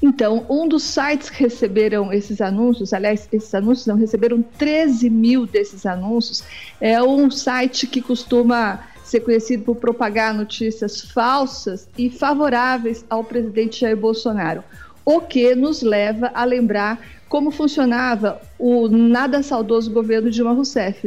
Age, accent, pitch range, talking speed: 50-69, Brazilian, 215-250 Hz, 135 wpm